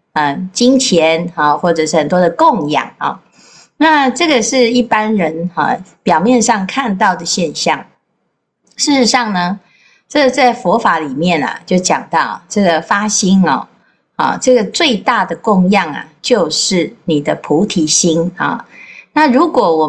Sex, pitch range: female, 180-250 Hz